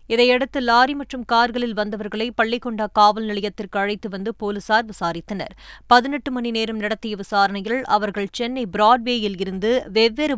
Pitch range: 210-245 Hz